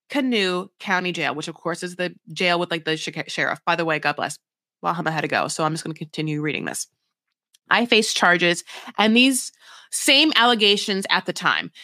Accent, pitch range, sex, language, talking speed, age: American, 180-240 Hz, female, English, 215 wpm, 30-49